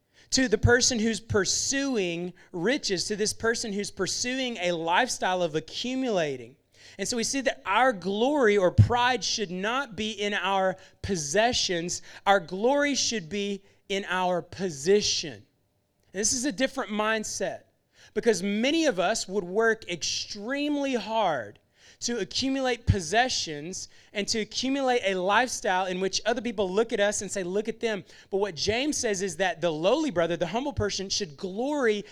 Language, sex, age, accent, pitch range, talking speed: English, male, 30-49, American, 190-240 Hz, 155 wpm